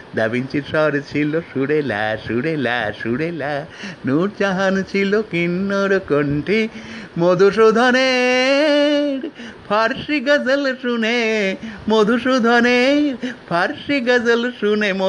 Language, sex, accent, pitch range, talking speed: Bengali, male, native, 140-220 Hz, 45 wpm